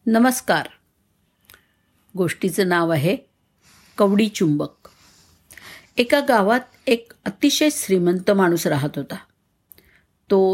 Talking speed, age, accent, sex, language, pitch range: 85 wpm, 60-79, native, female, Marathi, 170-230 Hz